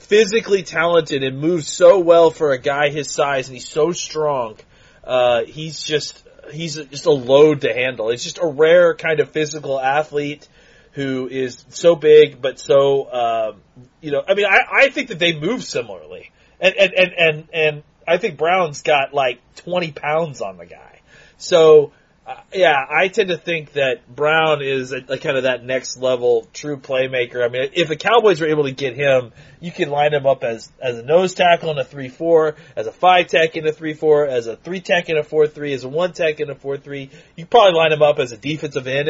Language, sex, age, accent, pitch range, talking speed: English, male, 30-49, American, 140-175 Hz, 205 wpm